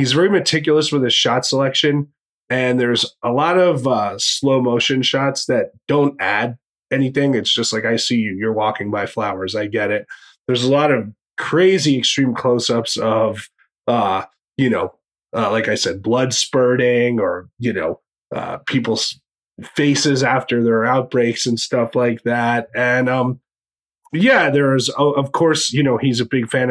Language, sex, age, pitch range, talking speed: English, male, 30-49, 115-140 Hz, 170 wpm